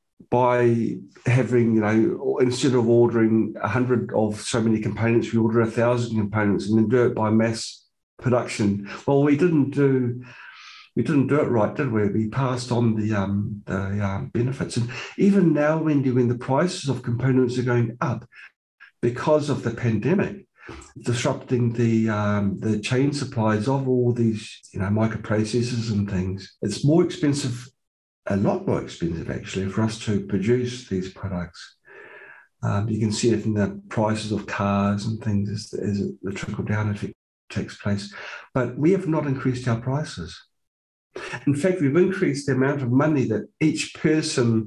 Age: 50-69